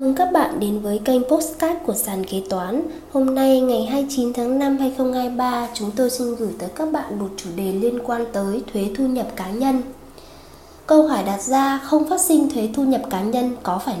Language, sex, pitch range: Vietnamese, female, 205-265 Hz